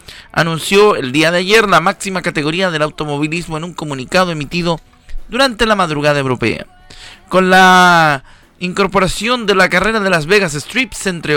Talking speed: 155 wpm